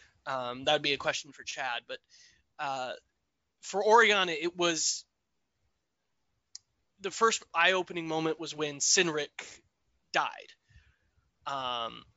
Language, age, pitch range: English, 20-39, 145-185 Hz